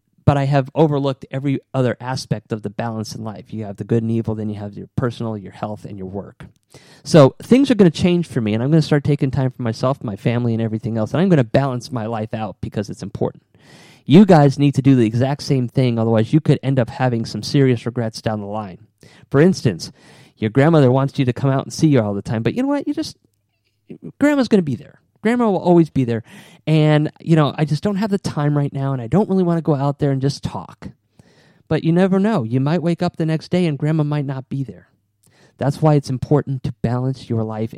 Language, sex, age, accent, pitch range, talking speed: English, male, 30-49, American, 115-155 Hz, 255 wpm